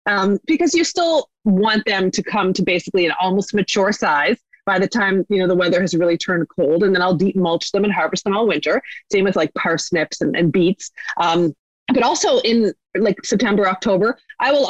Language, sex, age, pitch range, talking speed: English, female, 30-49, 180-225 Hz, 210 wpm